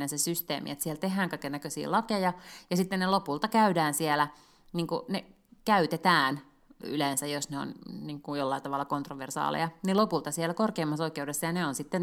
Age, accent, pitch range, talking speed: 30-49, native, 145-175 Hz, 165 wpm